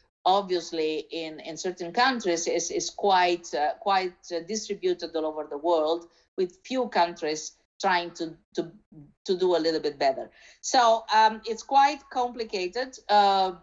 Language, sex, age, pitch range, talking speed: Italian, female, 50-69, 170-220 Hz, 145 wpm